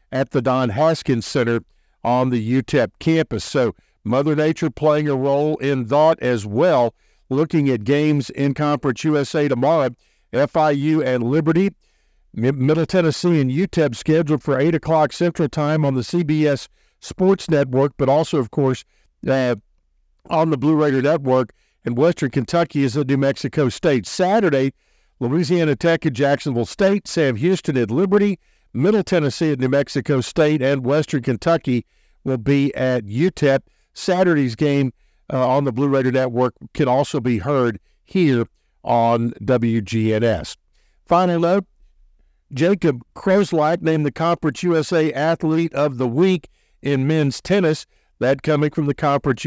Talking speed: 145 wpm